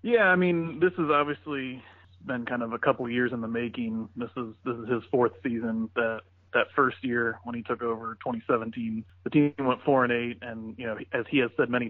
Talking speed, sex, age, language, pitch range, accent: 230 wpm, male, 30-49, English, 110-125 Hz, American